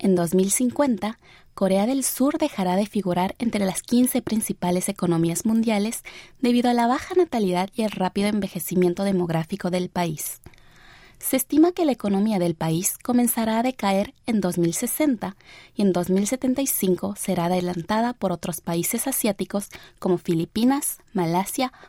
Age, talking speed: 20-39, 135 wpm